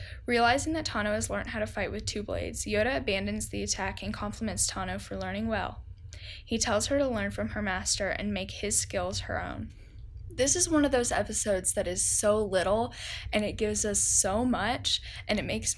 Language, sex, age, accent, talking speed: English, female, 10-29, American, 205 wpm